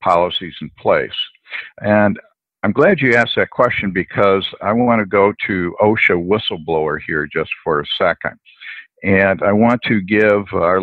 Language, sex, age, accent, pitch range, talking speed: English, male, 60-79, American, 85-105 Hz, 160 wpm